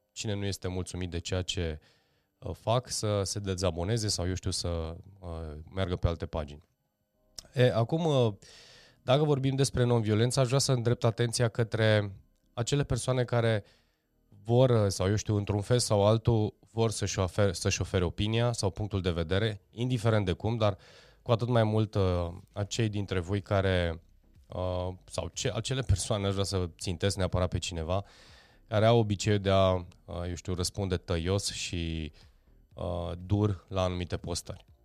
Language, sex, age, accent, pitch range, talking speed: Romanian, male, 20-39, native, 90-115 Hz, 160 wpm